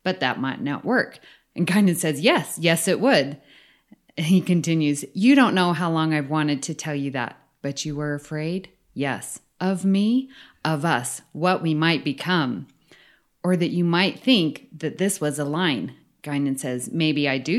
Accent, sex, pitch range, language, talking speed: American, female, 140-175 Hz, English, 180 wpm